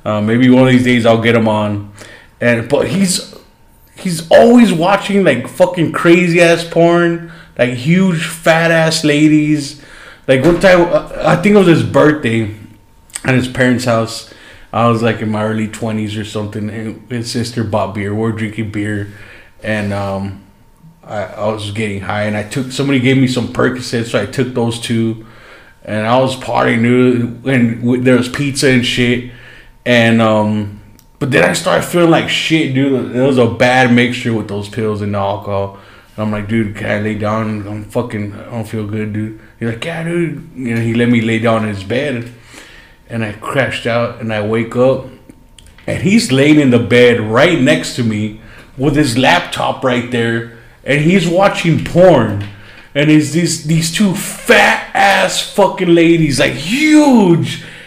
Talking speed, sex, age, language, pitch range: 180 wpm, male, 20-39, English, 110-150 Hz